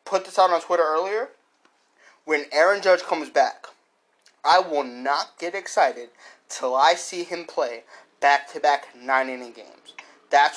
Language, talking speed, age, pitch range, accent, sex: English, 140 wpm, 20-39, 130-175 Hz, American, male